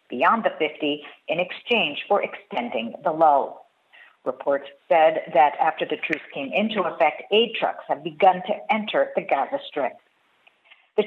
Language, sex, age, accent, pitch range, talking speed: English, female, 50-69, American, 160-215 Hz, 150 wpm